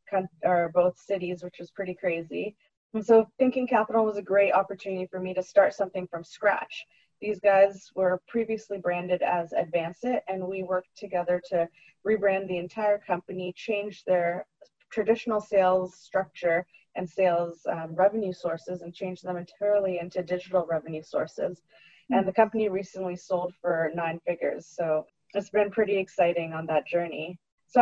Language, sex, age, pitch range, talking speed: English, female, 20-39, 175-200 Hz, 160 wpm